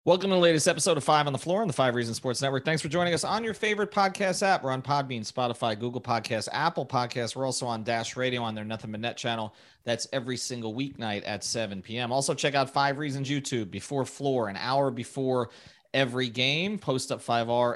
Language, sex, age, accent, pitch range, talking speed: English, male, 30-49, American, 120-150 Hz, 225 wpm